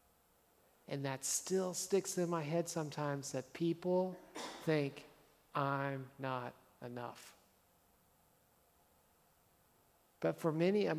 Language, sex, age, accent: English, male, 50-69, American